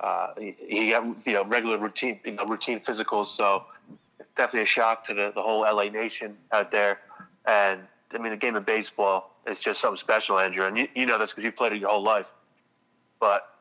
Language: English